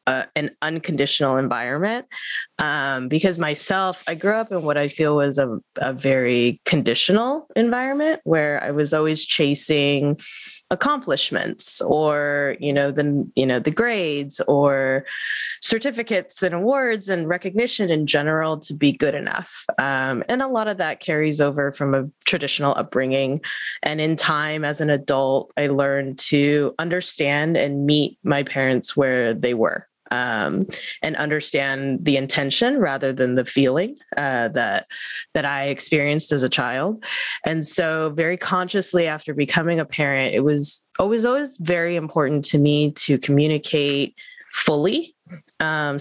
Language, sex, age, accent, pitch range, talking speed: English, female, 20-39, American, 140-180 Hz, 145 wpm